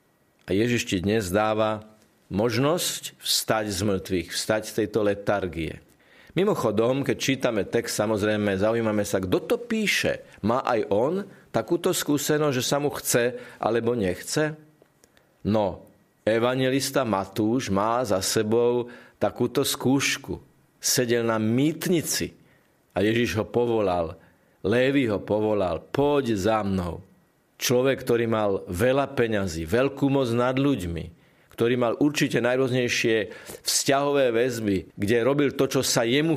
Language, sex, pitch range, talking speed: Slovak, male, 105-135 Hz, 125 wpm